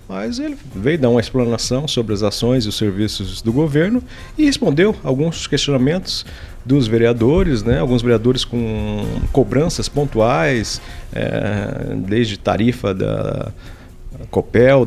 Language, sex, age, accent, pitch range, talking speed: Portuguese, male, 40-59, Brazilian, 115-165 Hz, 125 wpm